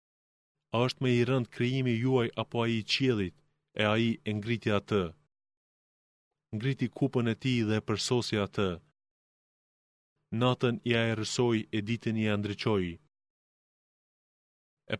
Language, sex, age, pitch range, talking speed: Greek, male, 20-39, 110-125 Hz, 135 wpm